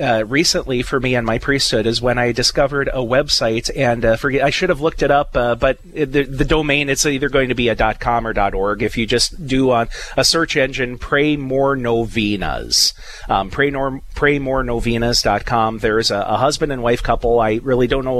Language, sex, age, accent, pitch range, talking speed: English, male, 30-49, American, 110-130 Hz, 210 wpm